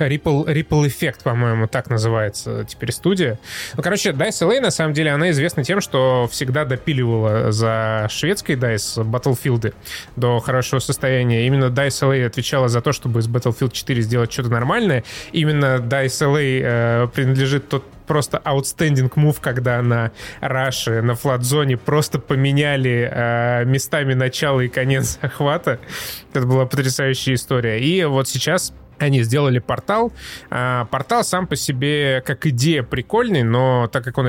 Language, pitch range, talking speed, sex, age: Russian, 120-145 Hz, 145 wpm, male, 20-39